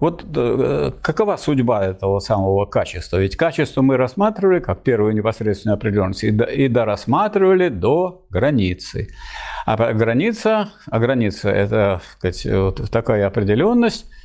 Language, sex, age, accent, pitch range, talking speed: Russian, male, 50-69, native, 100-145 Hz, 120 wpm